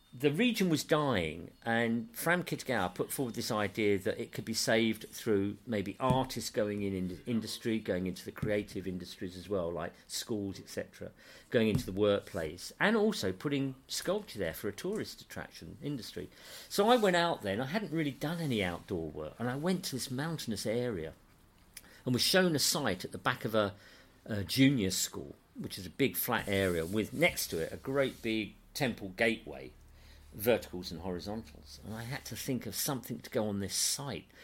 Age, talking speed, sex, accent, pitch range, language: 50-69, 195 wpm, male, British, 95-140 Hz, English